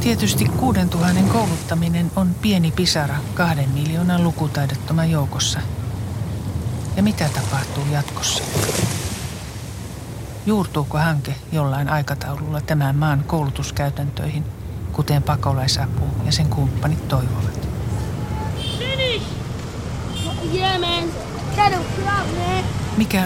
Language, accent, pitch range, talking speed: Finnish, native, 125-155 Hz, 70 wpm